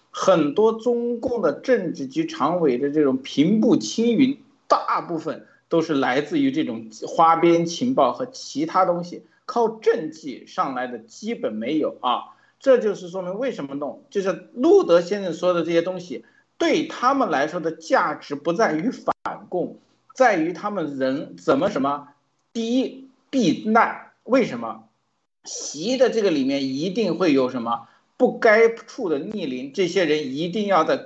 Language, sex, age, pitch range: Chinese, male, 50-69, 165-255 Hz